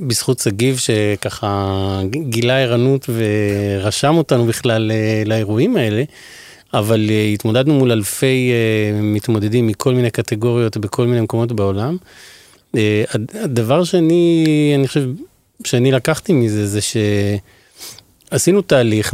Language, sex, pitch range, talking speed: Hebrew, male, 105-130 Hz, 100 wpm